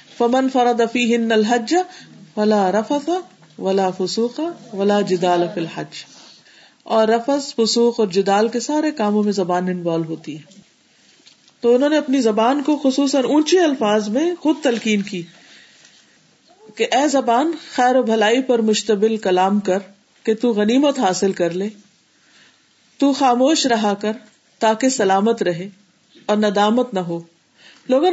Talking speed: 140 wpm